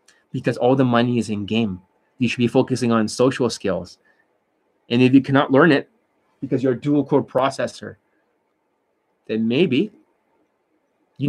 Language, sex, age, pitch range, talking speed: English, male, 20-39, 120-145 Hz, 150 wpm